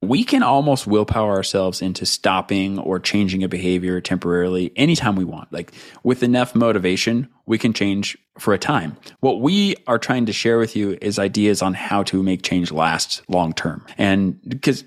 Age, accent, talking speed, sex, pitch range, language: 20-39, American, 180 wpm, male, 95-125 Hz, English